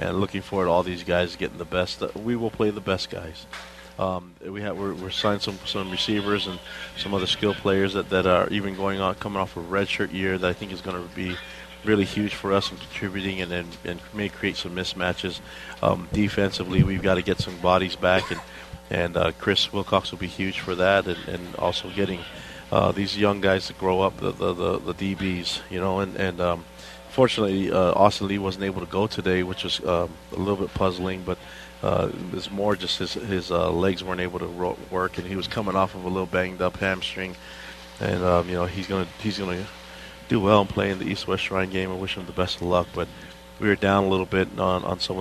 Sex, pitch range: male, 90-100 Hz